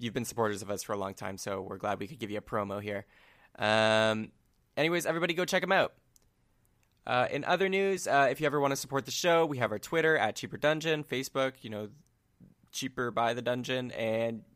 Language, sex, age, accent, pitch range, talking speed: English, male, 20-39, American, 110-170 Hz, 225 wpm